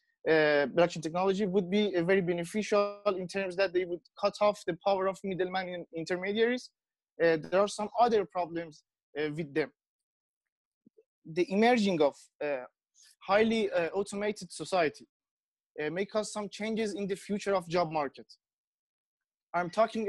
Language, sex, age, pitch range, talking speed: Persian, male, 20-39, 175-215 Hz, 150 wpm